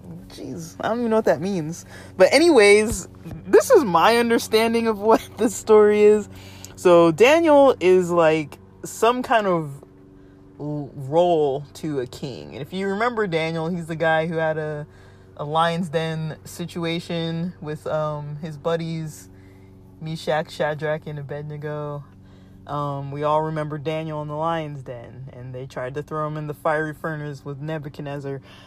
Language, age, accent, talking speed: English, 20-39, American, 155 wpm